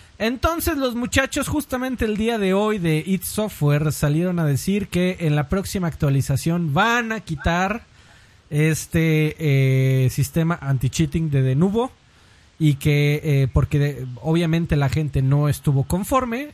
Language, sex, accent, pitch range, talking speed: Spanish, male, Mexican, 135-195 Hz, 145 wpm